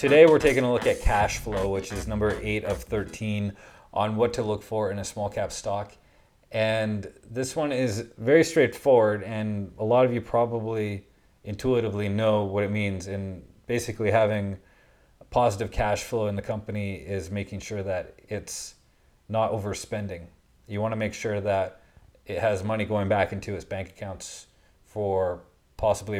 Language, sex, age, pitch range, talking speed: English, male, 30-49, 95-105 Hz, 170 wpm